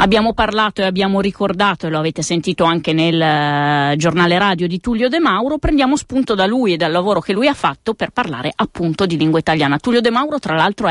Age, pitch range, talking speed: 30-49, 155-195 Hz, 220 wpm